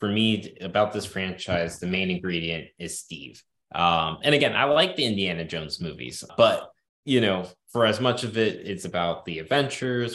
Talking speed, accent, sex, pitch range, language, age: 185 wpm, American, male, 100-135 Hz, English, 20-39